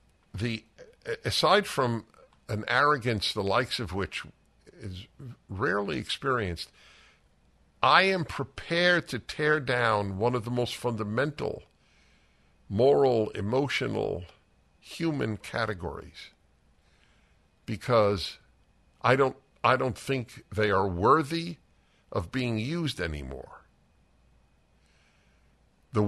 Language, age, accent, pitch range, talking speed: English, 60-79, American, 80-125 Hz, 95 wpm